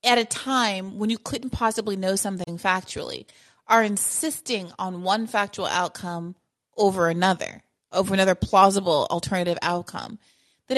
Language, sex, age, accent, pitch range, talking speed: English, female, 30-49, American, 175-215 Hz, 135 wpm